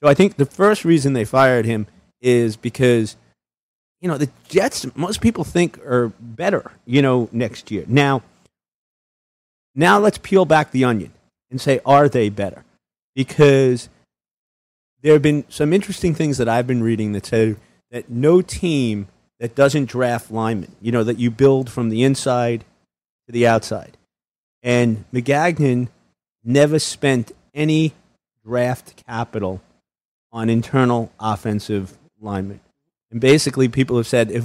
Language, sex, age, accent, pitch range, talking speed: English, male, 40-59, American, 115-145 Hz, 145 wpm